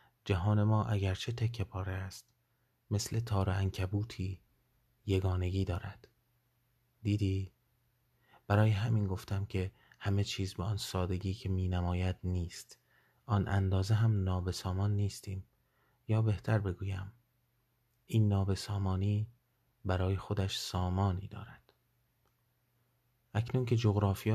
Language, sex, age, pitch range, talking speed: Persian, male, 30-49, 95-115 Hz, 105 wpm